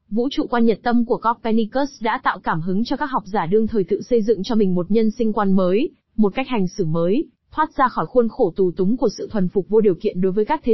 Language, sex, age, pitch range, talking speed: Vietnamese, female, 20-39, 200-250 Hz, 280 wpm